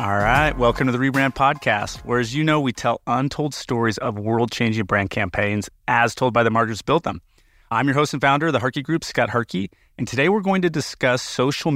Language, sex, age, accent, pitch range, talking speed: English, male, 30-49, American, 110-140 Hz, 225 wpm